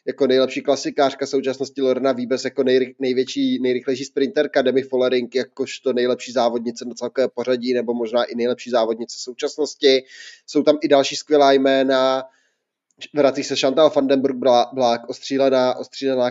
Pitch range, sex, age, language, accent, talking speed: 130-145 Hz, male, 20-39, Czech, native, 145 wpm